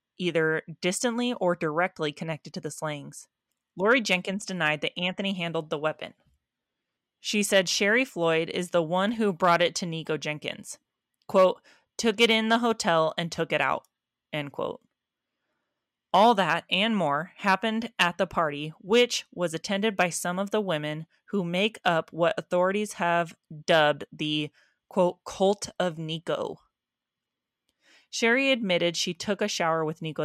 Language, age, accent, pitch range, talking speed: English, 20-39, American, 155-195 Hz, 155 wpm